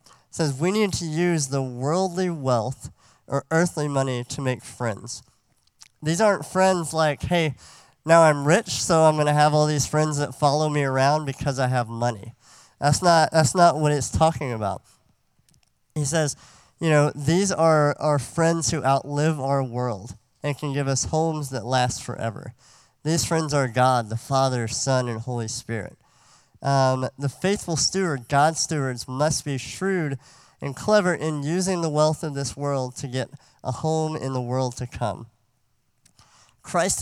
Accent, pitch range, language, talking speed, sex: American, 125-155 Hz, English, 170 wpm, male